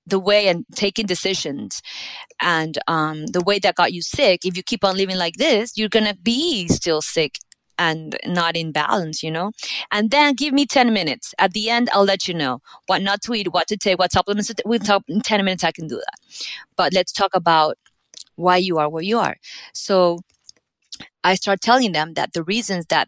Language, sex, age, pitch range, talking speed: English, female, 30-49, 170-215 Hz, 215 wpm